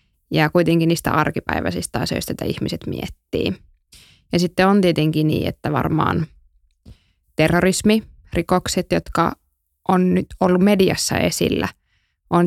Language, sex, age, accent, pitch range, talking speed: Finnish, female, 20-39, native, 155-180 Hz, 115 wpm